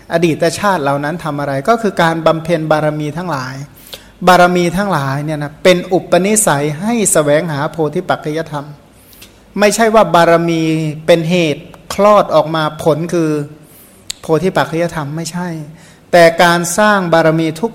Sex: male